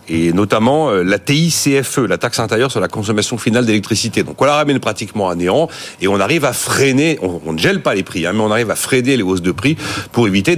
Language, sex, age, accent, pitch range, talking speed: French, male, 40-59, French, 90-130 Hz, 240 wpm